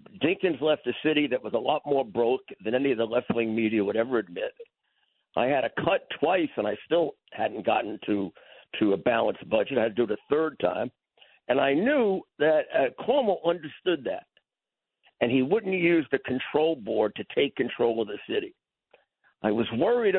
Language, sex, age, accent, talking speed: English, male, 60-79, American, 195 wpm